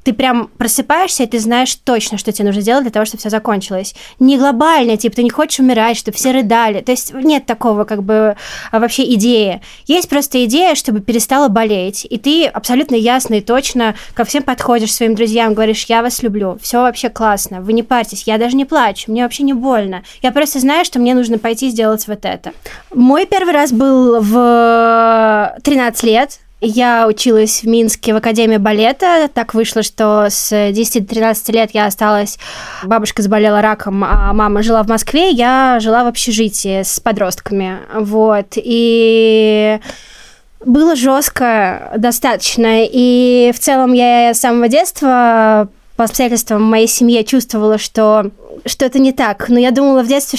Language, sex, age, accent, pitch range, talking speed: Russian, female, 20-39, native, 220-255 Hz, 170 wpm